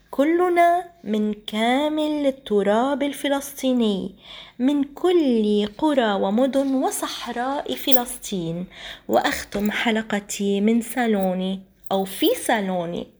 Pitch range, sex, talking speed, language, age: 210-300 Hz, female, 80 wpm, Arabic, 20-39